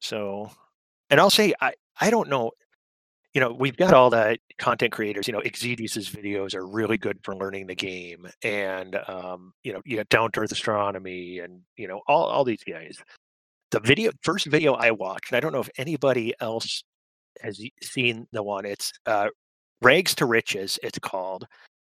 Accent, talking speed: American, 185 wpm